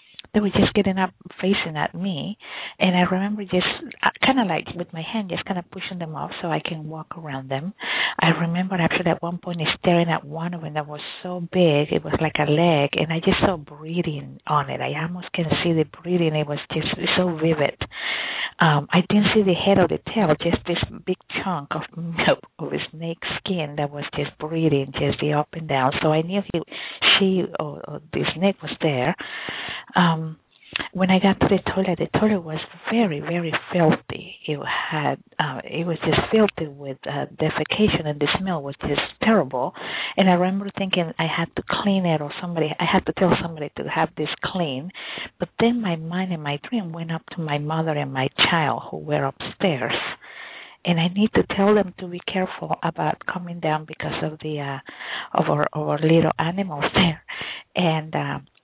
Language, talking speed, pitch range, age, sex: English, 200 wpm, 155-185 Hz, 50-69, female